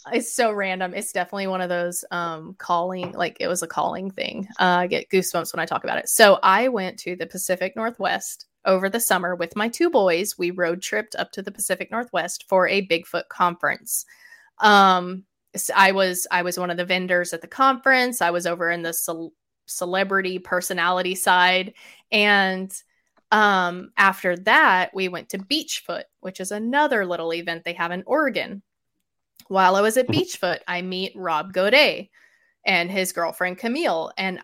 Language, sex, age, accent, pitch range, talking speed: English, female, 20-39, American, 175-200 Hz, 180 wpm